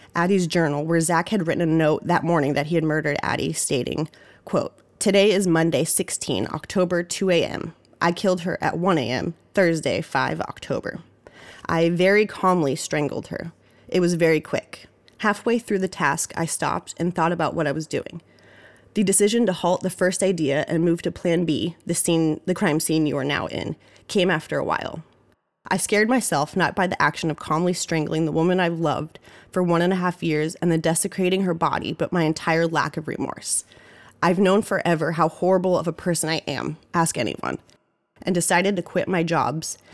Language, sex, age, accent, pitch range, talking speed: English, female, 20-39, American, 155-180 Hz, 195 wpm